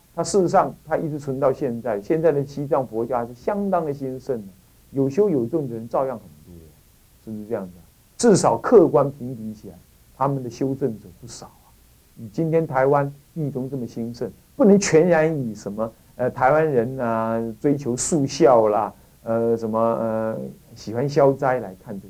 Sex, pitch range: male, 110-160 Hz